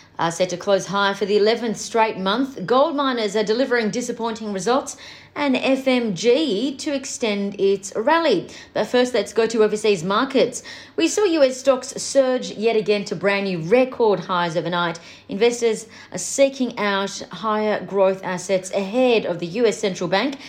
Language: English